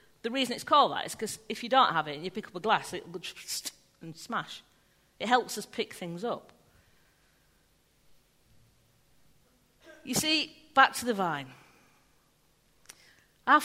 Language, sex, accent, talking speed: English, female, British, 155 wpm